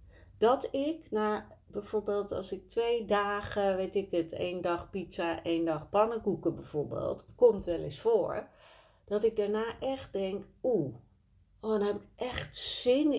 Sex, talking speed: female, 150 wpm